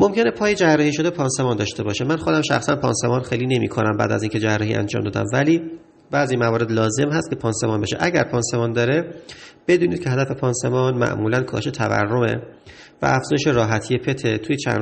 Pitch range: 115-145 Hz